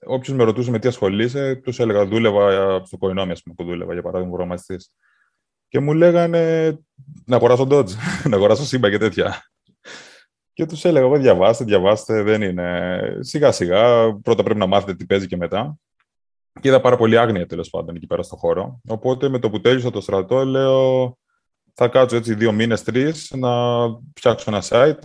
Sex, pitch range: male, 95-130 Hz